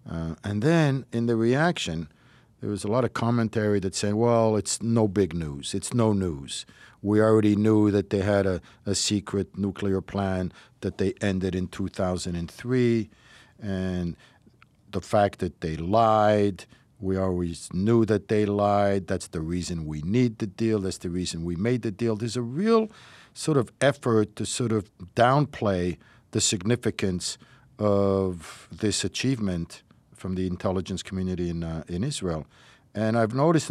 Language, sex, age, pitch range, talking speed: English, male, 60-79, 95-120 Hz, 160 wpm